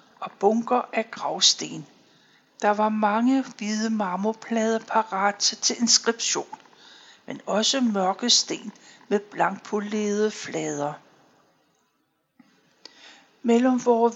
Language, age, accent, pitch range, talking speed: Danish, 60-79, native, 195-240 Hz, 90 wpm